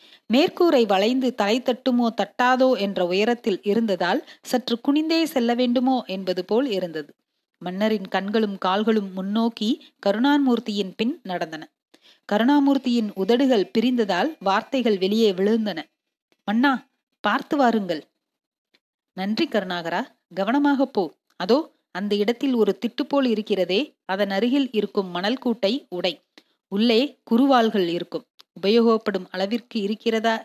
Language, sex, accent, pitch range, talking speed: Tamil, female, native, 195-255 Hz, 105 wpm